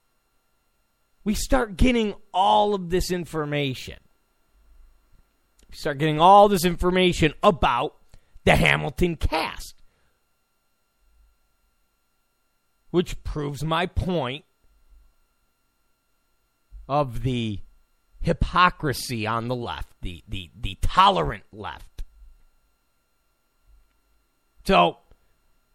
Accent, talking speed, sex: American, 75 wpm, male